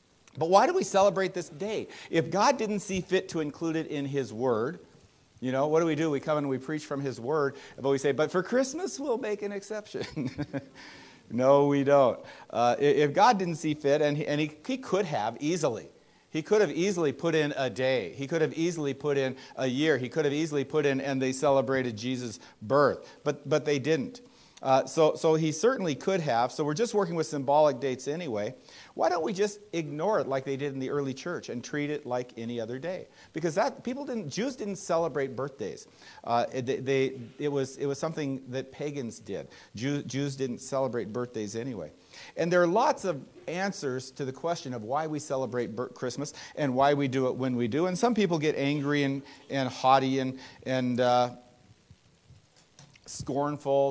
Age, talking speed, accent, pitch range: 50-69, 205 wpm, American, 130-160 Hz